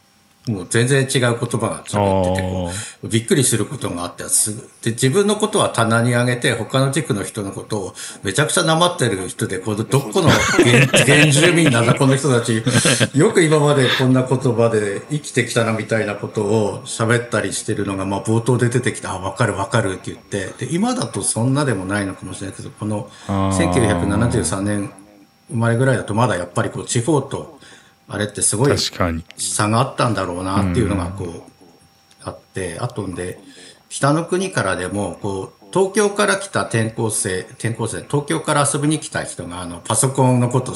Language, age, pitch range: Japanese, 60-79, 100-135 Hz